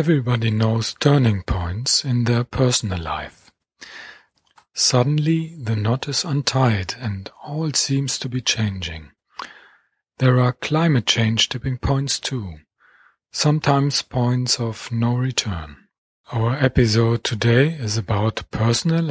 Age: 40-59